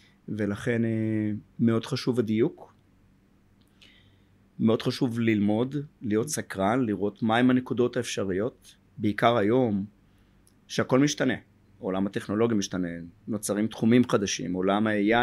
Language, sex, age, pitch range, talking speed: Hebrew, male, 30-49, 105-120 Hz, 100 wpm